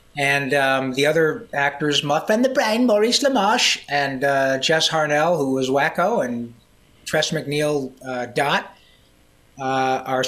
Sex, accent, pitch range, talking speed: male, American, 130-150 Hz, 145 wpm